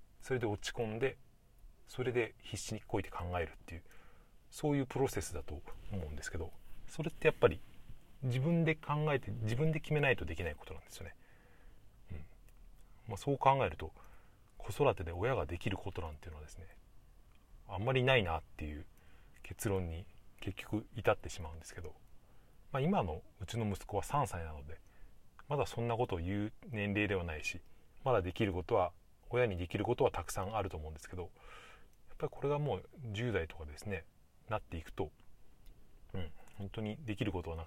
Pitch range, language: 85-115 Hz, Japanese